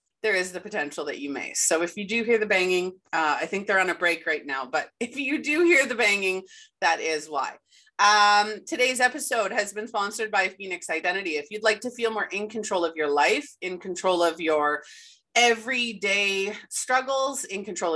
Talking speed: 205 wpm